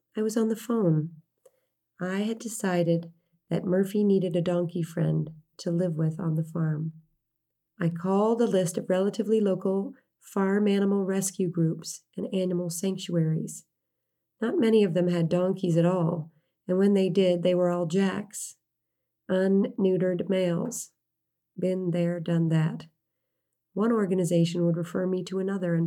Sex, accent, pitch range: female, American, 165-195 Hz